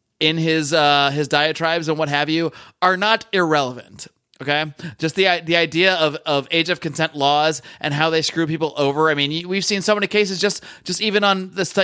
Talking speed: 210 wpm